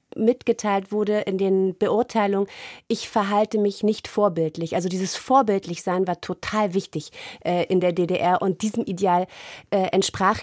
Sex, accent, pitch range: female, German, 185-225 Hz